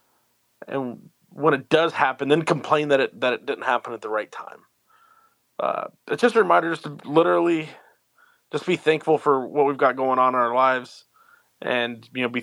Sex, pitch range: male, 125-165 Hz